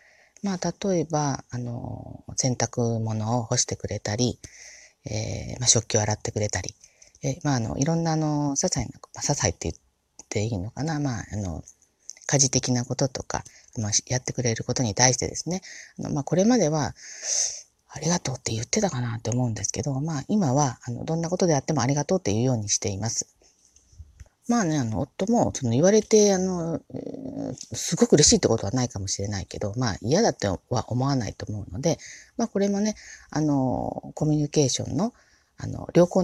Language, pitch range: Japanese, 110-160 Hz